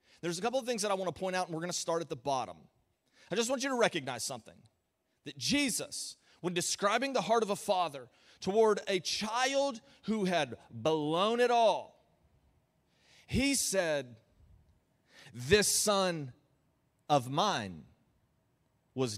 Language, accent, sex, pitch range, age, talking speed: English, American, male, 185-260 Hz, 30-49, 155 wpm